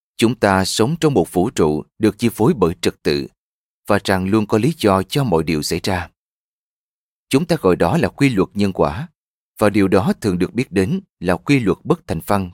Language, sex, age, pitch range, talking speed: Vietnamese, male, 30-49, 90-115 Hz, 220 wpm